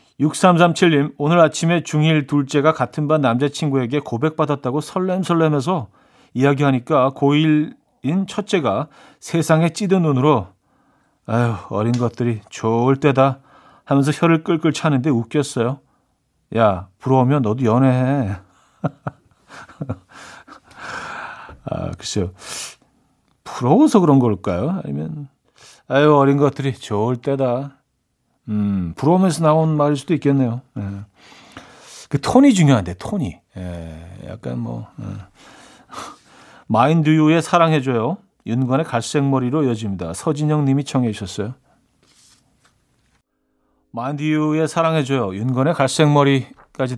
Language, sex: Korean, male